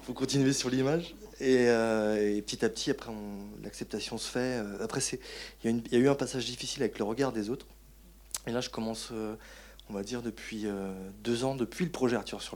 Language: French